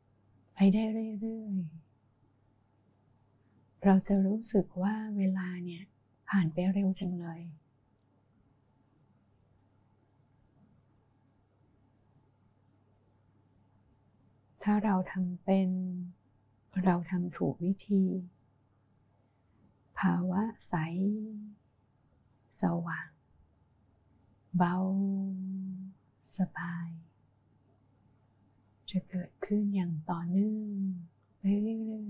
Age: 20-39